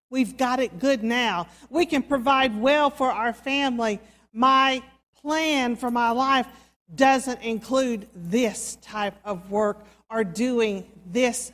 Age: 50-69